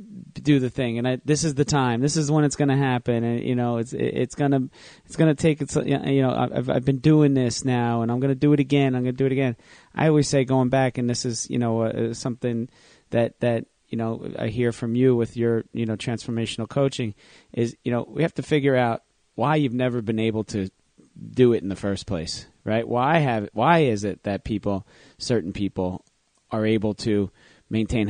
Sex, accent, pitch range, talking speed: male, American, 105-125 Hz, 235 wpm